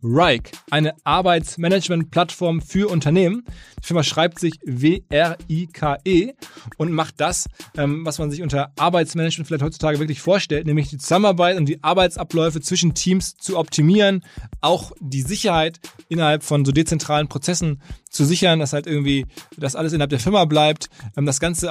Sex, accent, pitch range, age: male, German, 150-175 Hz, 20-39